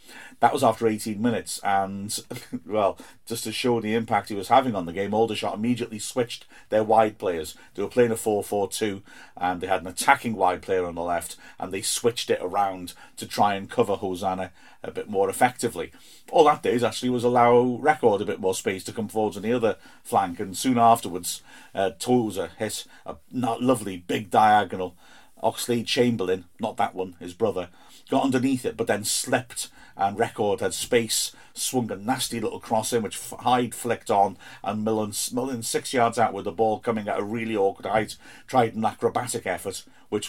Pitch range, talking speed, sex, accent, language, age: 100-120 Hz, 190 wpm, male, British, English, 50-69